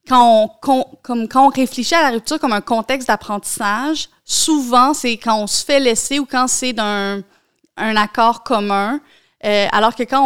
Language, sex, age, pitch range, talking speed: French, female, 30-49, 215-255 Hz, 195 wpm